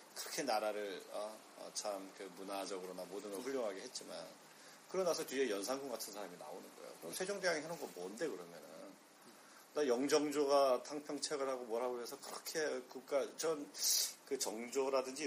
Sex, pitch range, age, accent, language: male, 110-170 Hz, 40-59, native, Korean